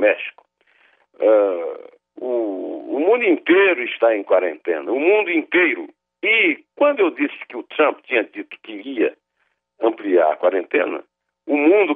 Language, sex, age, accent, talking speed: Portuguese, male, 60-79, Brazilian, 140 wpm